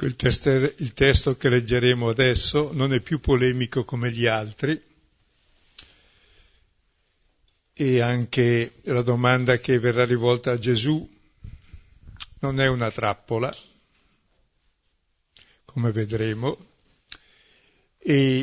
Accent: native